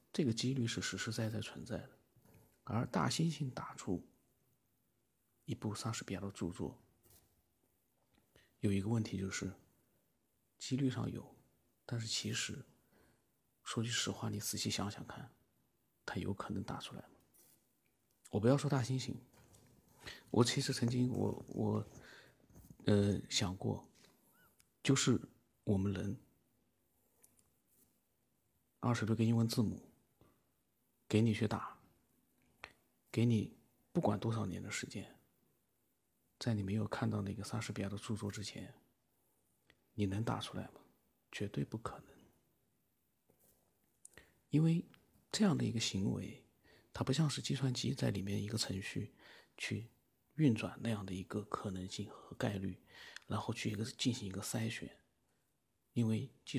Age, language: 50-69, Chinese